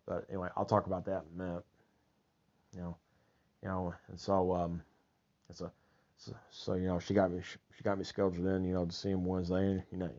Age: 30-49